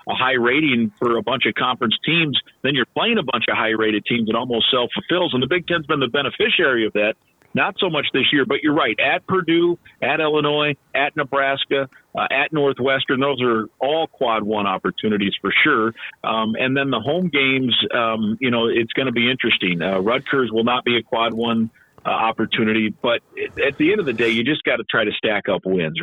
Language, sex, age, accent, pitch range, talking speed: English, male, 50-69, American, 110-155 Hz, 220 wpm